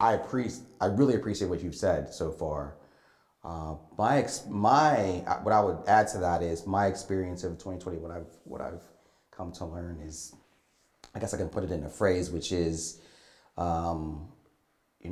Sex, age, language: male, 30-49, English